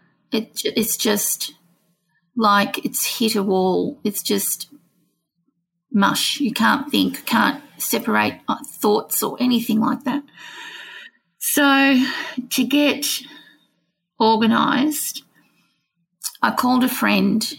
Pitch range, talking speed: 210-270 Hz, 95 wpm